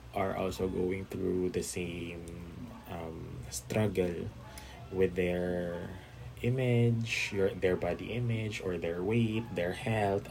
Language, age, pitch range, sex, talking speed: Filipino, 20-39, 85-100 Hz, male, 115 wpm